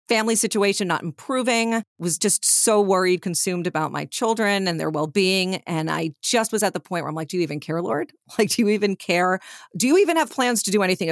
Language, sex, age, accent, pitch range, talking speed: English, female, 40-59, American, 160-210 Hz, 230 wpm